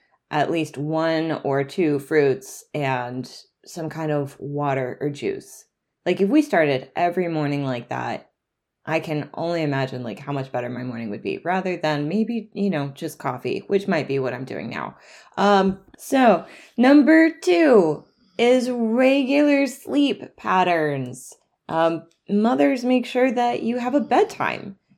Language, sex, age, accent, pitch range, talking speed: English, female, 20-39, American, 155-225 Hz, 155 wpm